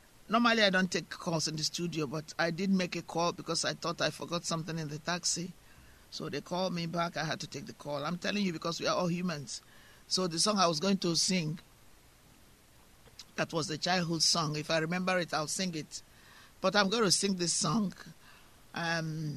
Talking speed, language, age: 215 wpm, English, 50-69